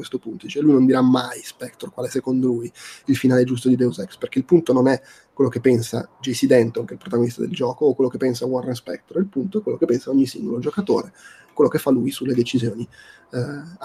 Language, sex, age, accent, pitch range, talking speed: Italian, male, 20-39, native, 125-155 Hz, 245 wpm